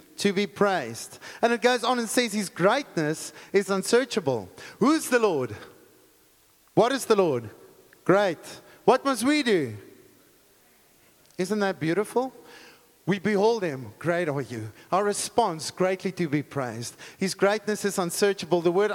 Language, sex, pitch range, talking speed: English, male, 175-230 Hz, 150 wpm